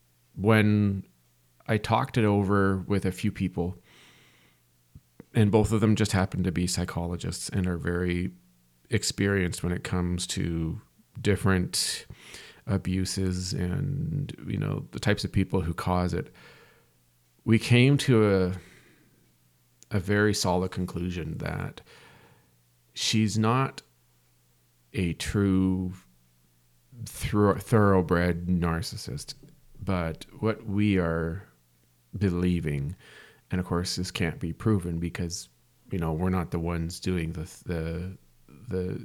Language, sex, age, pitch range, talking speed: English, male, 40-59, 80-100 Hz, 115 wpm